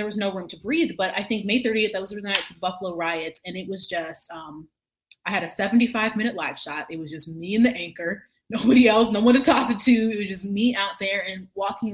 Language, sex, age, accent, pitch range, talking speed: English, female, 20-39, American, 170-205 Hz, 260 wpm